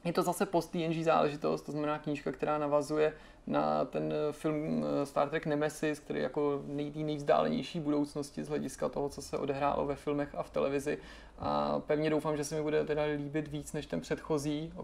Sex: male